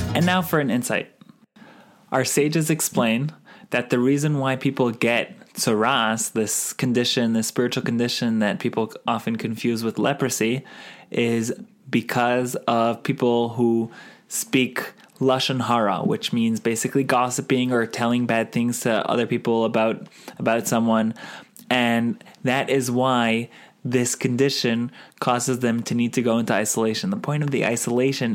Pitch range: 115-130 Hz